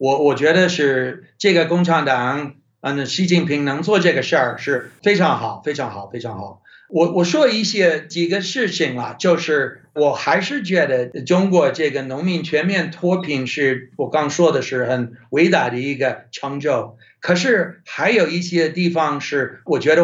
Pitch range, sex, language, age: 130-185 Hz, male, Chinese, 60-79